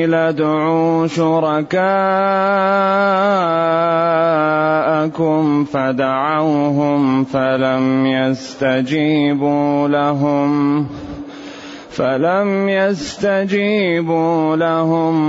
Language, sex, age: Arabic, male, 30-49